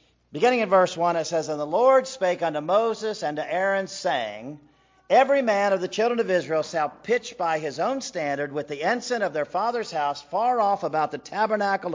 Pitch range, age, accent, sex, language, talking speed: 155-220 Hz, 50-69, American, male, English, 205 wpm